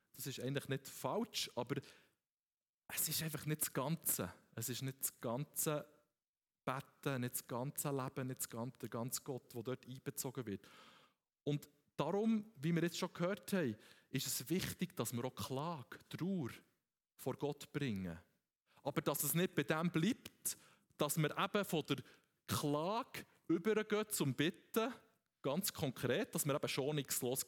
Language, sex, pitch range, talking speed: German, male, 125-175 Hz, 170 wpm